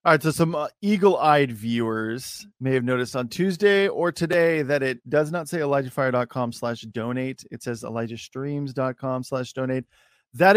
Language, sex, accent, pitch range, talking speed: English, male, American, 125-165 Hz, 165 wpm